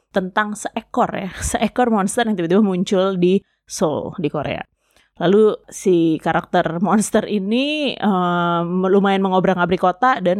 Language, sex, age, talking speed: Indonesian, female, 20-39, 125 wpm